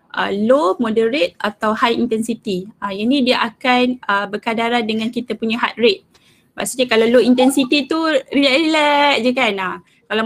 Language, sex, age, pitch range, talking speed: Malay, female, 20-39, 220-265 Hz, 140 wpm